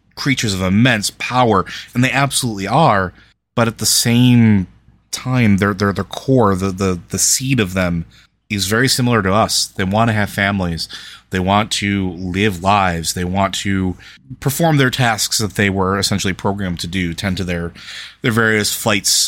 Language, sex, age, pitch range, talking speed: English, male, 30-49, 95-115 Hz, 175 wpm